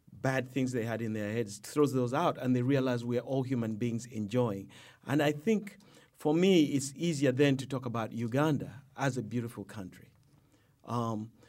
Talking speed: 190 wpm